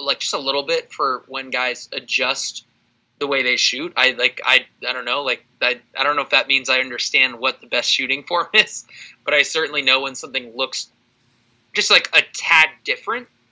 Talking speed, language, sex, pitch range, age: 210 wpm, English, male, 120-150 Hz, 20-39